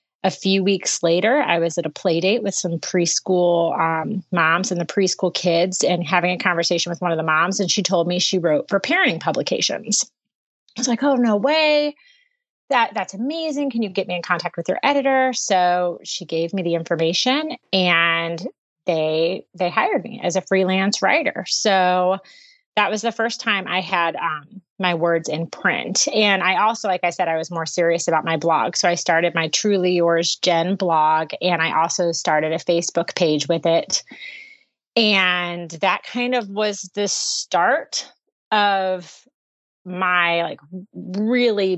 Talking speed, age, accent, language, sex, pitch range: 180 wpm, 30-49, American, English, female, 170-205 Hz